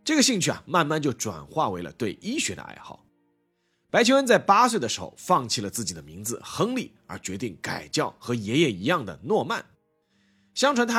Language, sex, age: Chinese, male, 30-49